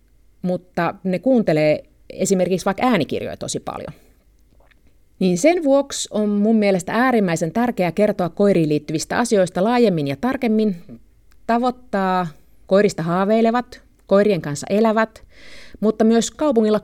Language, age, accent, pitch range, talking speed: Finnish, 30-49, native, 170-235 Hz, 115 wpm